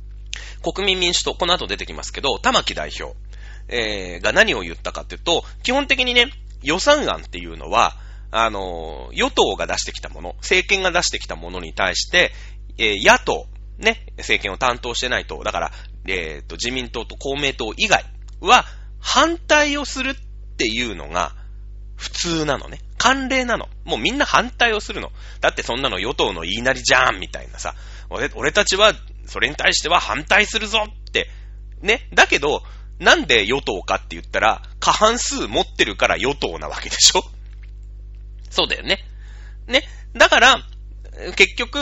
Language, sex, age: Japanese, male, 30-49